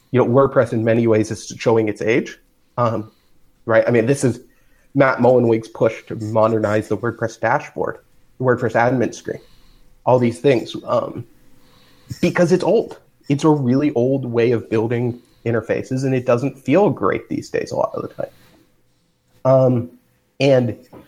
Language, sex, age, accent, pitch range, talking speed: English, male, 30-49, American, 115-130 Hz, 160 wpm